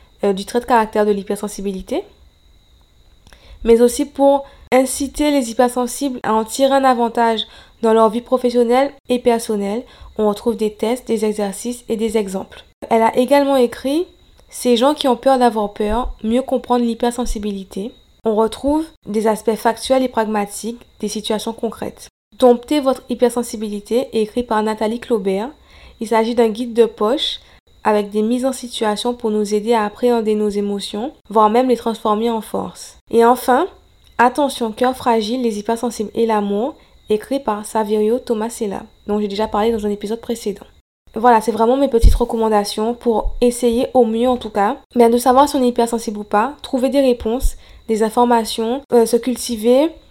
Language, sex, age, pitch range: French, female, 20-39, 215-250 Hz